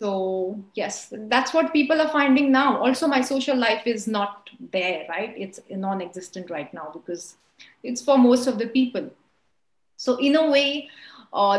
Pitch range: 195-260 Hz